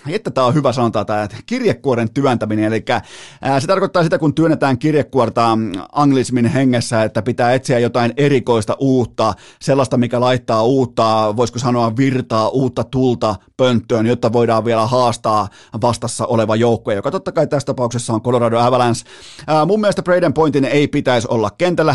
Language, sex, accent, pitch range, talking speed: Finnish, male, native, 115-145 Hz, 155 wpm